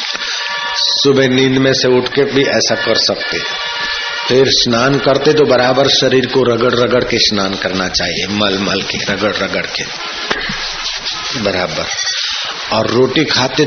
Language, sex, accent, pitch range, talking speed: Hindi, male, native, 115-140 Hz, 145 wpm